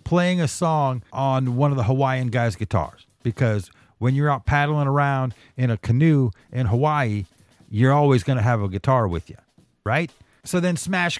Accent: American